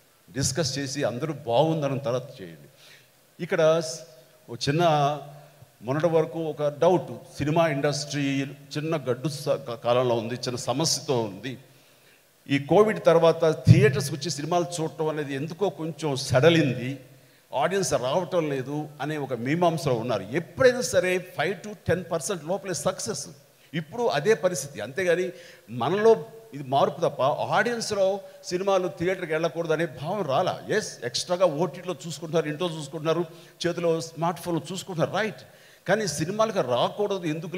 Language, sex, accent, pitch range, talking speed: Telugu, male, native, 135-175 Hz, 125 wpm